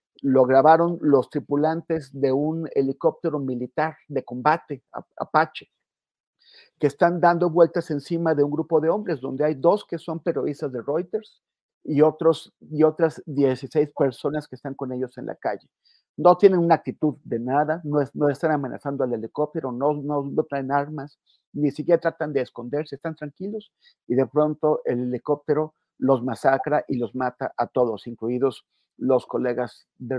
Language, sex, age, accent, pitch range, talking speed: Spanish, male, 50-69, Mexican, 135-165 Hz, 165 wpm